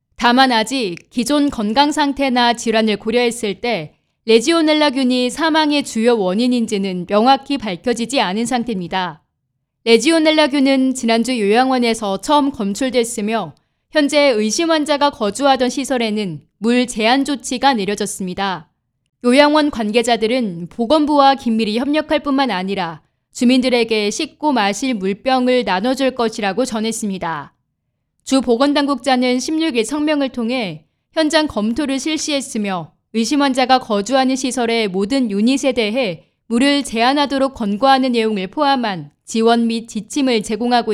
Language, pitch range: Korean, 210-275 Hz